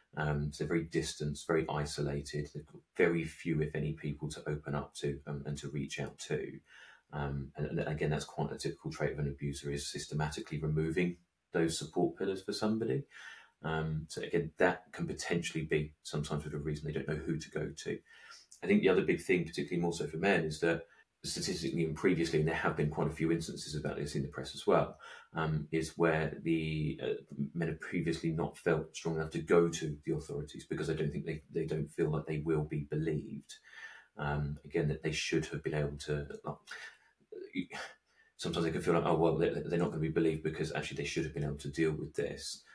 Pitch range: 75-85 Hz